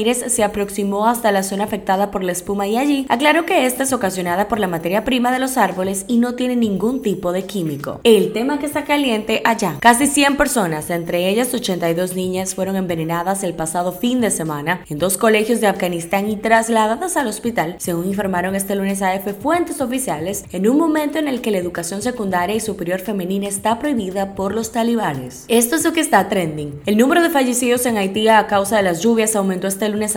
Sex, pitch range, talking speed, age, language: female, 185-230 Hz, 205 wpm, 10-29, Spanish